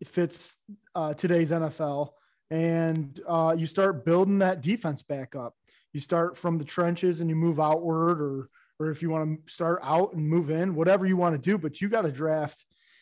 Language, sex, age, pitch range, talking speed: English, male, 20-39, 155-190 Hz, 205 wpm